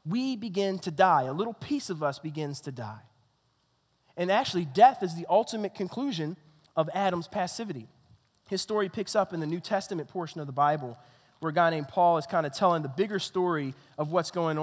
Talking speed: 200 wpm